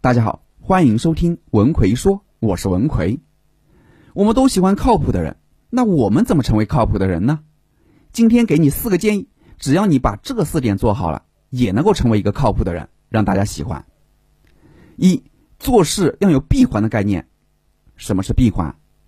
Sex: male